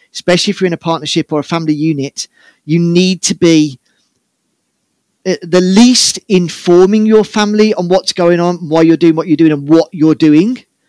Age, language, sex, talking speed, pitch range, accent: 40-59, English, male, 180 wpm, 145-180 Hz, British